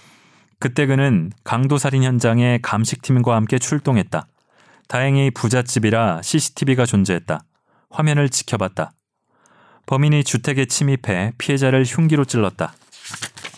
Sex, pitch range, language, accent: male, 105-130 Hz, Korean, native